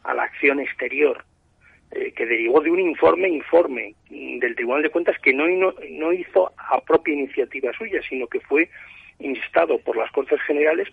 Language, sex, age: Spanish, male, 40-59